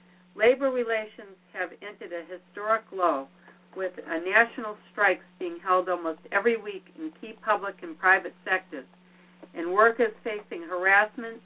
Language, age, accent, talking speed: English, 50-69, American, 130 wpm